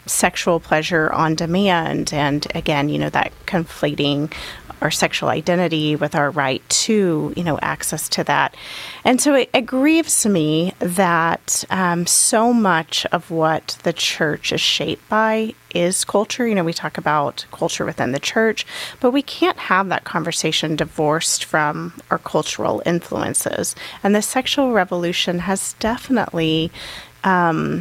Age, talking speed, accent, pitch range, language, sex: 30-49, 145 wpm, American, 160-210 Hz, English, female